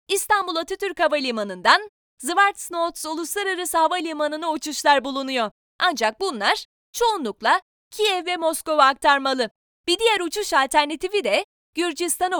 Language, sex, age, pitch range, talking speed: Turkish, female, 30-49, 290-390 Hz, 105 wpm